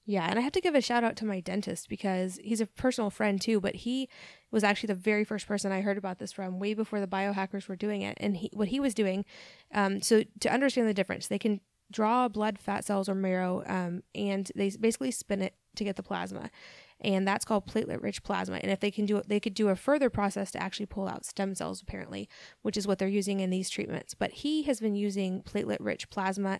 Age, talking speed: 10-29, 245 wpm